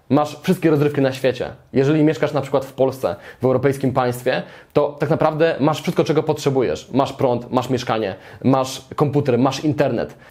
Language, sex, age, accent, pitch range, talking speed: Polish, male, 20-39, native, 135-160 Hz, 170 wpm